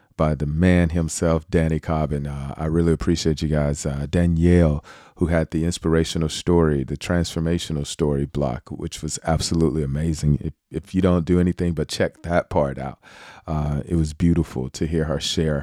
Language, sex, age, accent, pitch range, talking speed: English, male, 40-59, American, 75-90 Hz, 180 wpm